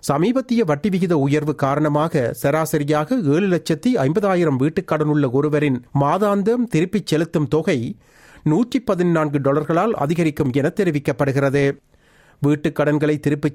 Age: 40-59